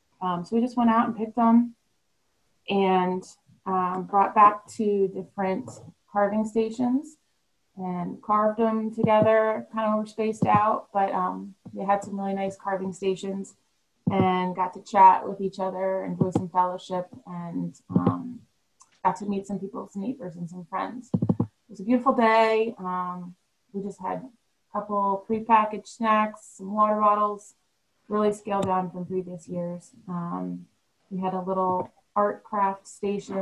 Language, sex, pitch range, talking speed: English, female, 180-215 Hz, 155 wpm